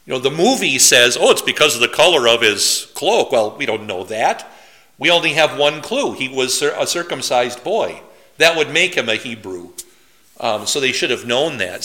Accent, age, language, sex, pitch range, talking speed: American, 50-69, English, male, 140-180 Hz, 215 wpm